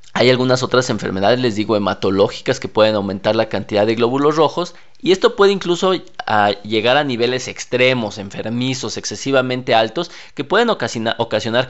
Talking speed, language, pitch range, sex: 150 wpm, Spanish, 105-135 Hz, male